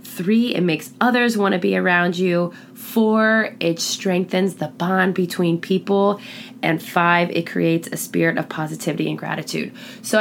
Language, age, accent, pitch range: English, 20-39, American, 180-220 Hz